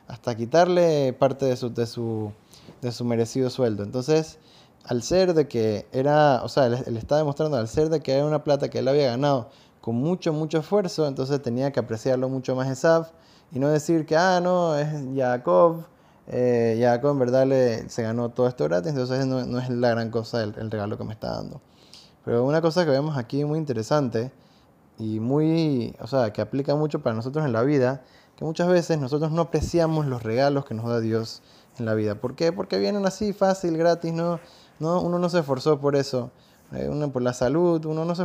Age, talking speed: 10-29, 210 wpm